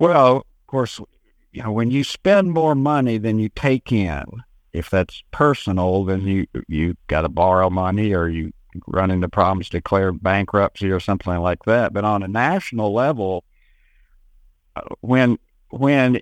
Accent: American